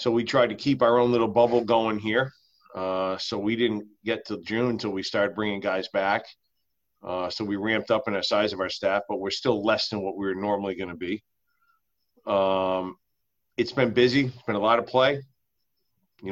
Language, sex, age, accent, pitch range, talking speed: English, male, 40-59, American, 100-125 Hz, 210 wpm